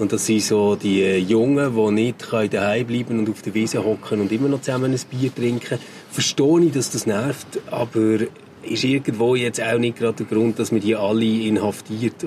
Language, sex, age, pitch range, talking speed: German, male, 30-49, 110-140 Hz, 200 wpm